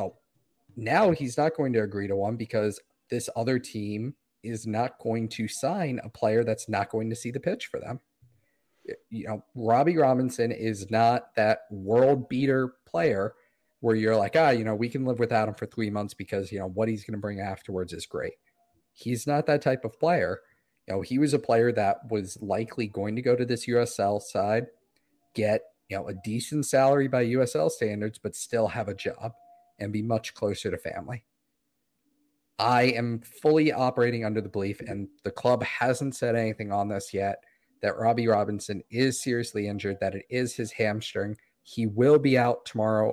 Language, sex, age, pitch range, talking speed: English, male, 40-59, 105-125 Hz, 190 wpm